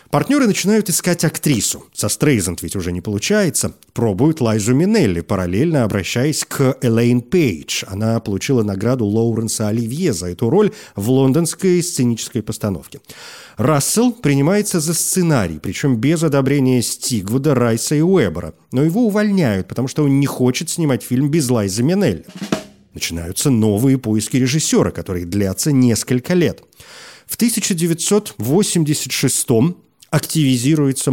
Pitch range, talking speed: 115-165 Hz, 125 wpm